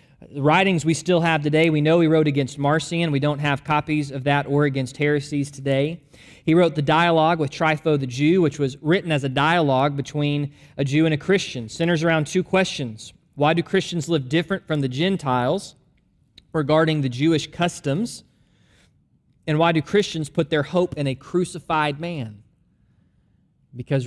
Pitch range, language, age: 135-165 Hz, English, 20-39